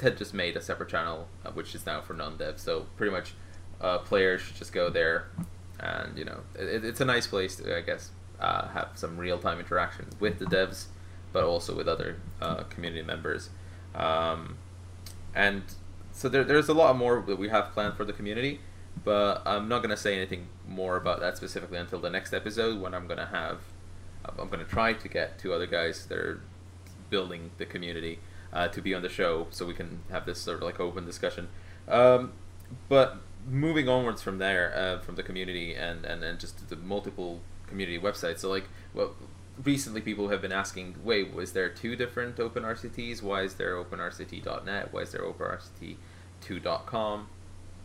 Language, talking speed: English, 190 wpm